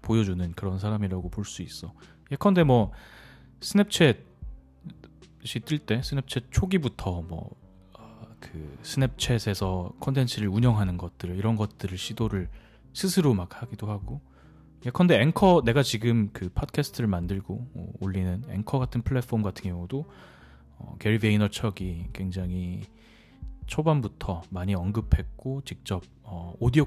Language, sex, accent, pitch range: Korean, male, native, 95-130 Hz